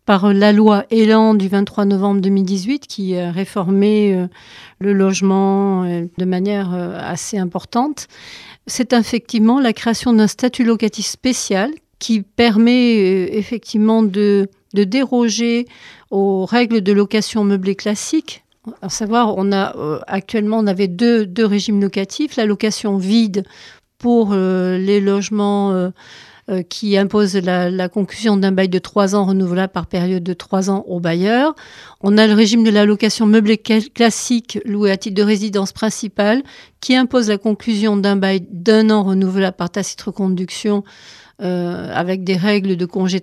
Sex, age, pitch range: female, 40-59, 195-230 Hz